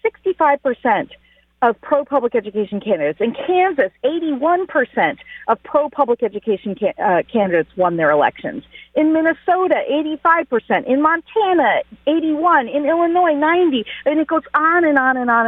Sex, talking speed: female, 130 wpm